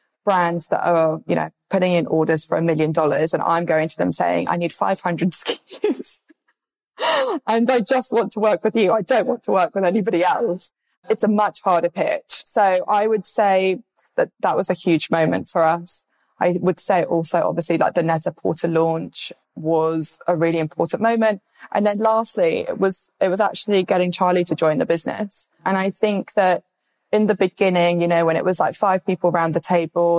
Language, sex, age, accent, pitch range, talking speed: English, female, 20-39, British, 170-200 Hz, 205 wpm